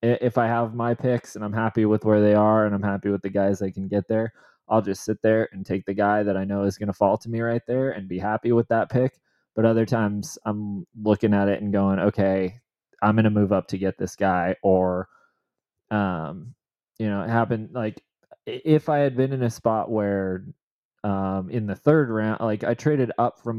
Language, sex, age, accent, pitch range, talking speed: English, male, 20-39, American, 95-110 Hz, 230 wpm